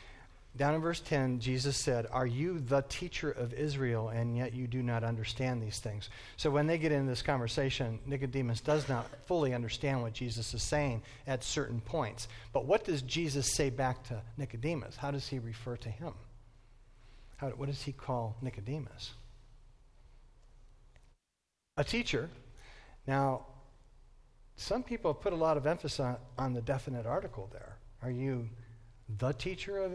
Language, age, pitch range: English, 40-59, 115-145 Hz